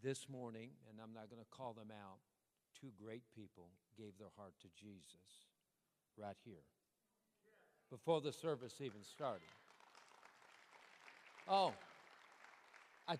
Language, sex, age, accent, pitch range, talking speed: English, male, 60-79, American, 100-160 Hz, 120 wpm